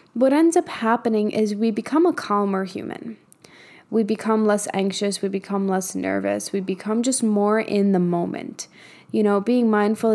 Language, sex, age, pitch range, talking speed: English, female, 10-29, 190-230 Hz, 170 wpm